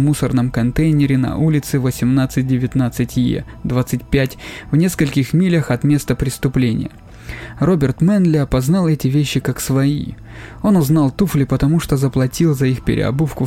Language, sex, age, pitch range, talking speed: Russian, male, 20-39, 130-155 Hz, 125 wpm